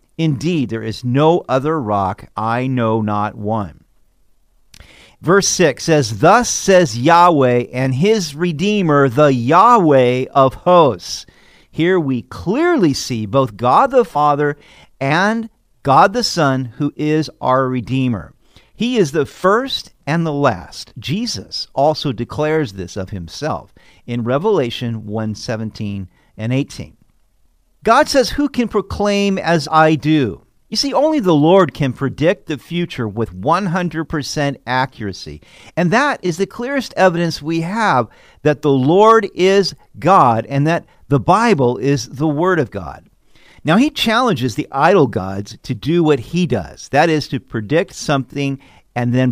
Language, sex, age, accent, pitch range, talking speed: English, male, 50-69, American, 120-175 Hz, 145 wpm